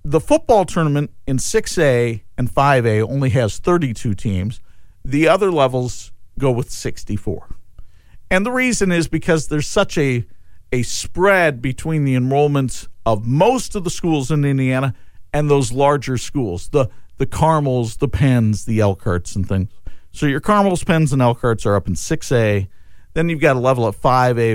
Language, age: English, 50-69